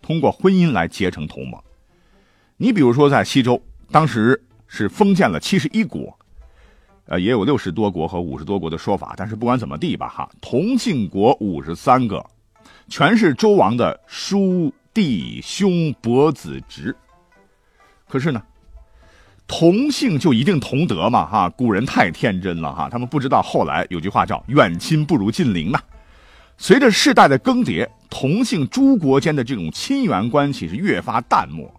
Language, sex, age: Chinese, male, 50-69